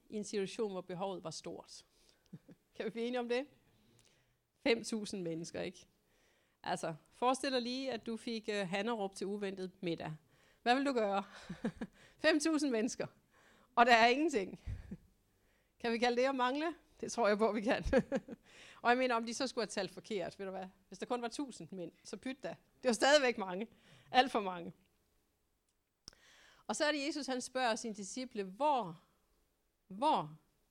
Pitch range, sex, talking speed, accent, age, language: 190-255 Hz, female, 175 wpm, native, 40-59, Danish